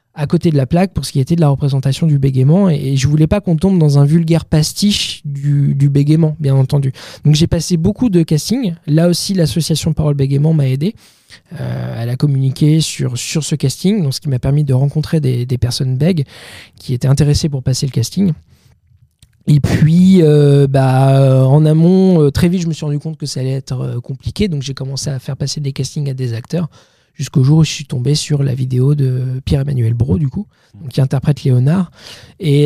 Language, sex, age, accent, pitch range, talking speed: French, male, 20-39, French, 135-160 Hz, 215 wpm